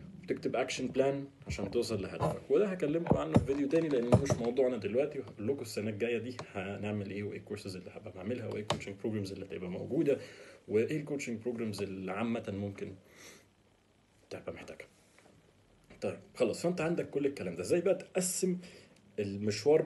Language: Arabic